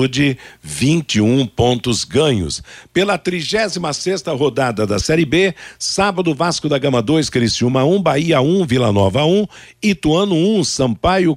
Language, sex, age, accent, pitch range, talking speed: Portuguese, male, 60-79, Brazilian, 120-165 Hz, 155 wpm